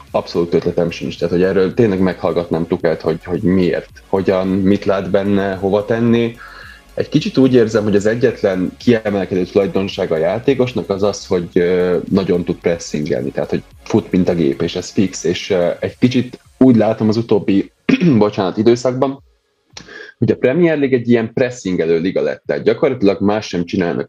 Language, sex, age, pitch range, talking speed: Hungarian, male, 20-39, 90-115 Hz, 165 wpm